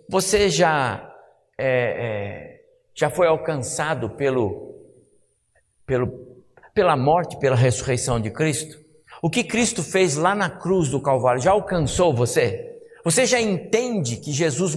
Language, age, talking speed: Portuguese, 60-79, 115 wpm